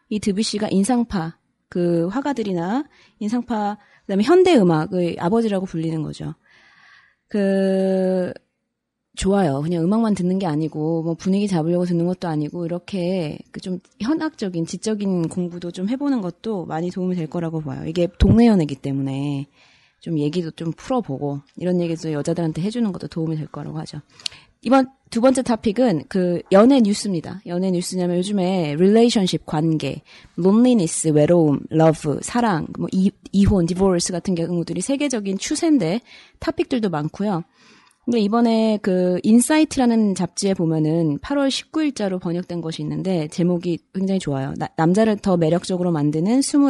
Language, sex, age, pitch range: Korean, female, 20-39, 165-220 Hz